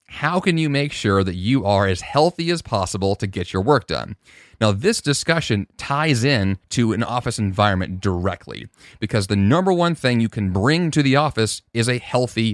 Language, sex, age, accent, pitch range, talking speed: English, male, 30-49, American, 95-125 Hz, 195 wpm